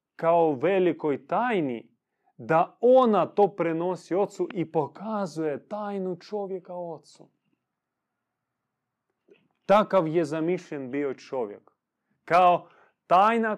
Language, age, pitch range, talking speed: Croatian, 30-49, 120-175 Hz, 90 wpm